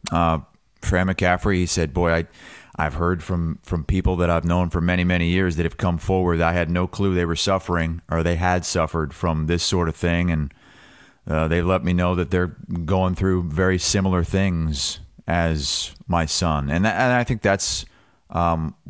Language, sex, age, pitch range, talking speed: English, male, 30-49, 80-95 Hz, 195 wpm